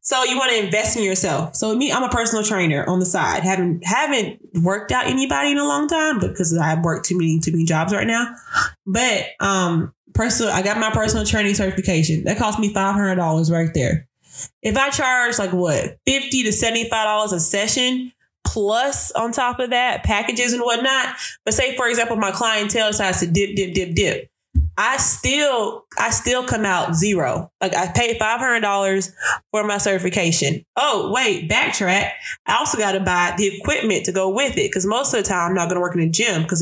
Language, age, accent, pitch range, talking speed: English, 20-39, American, 180-230 Hz, 200 wpm